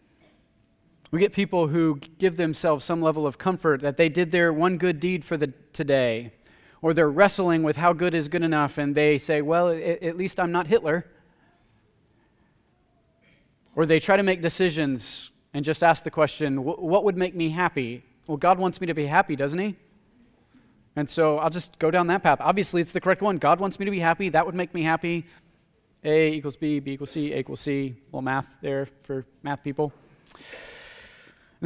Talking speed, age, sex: 195 wpm, 20-39, male